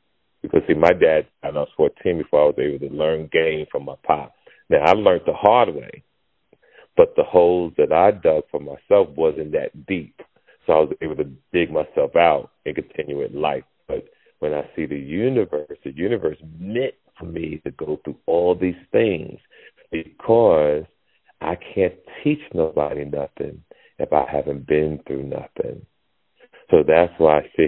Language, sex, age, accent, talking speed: English, male, 40-59, American, 175 wpm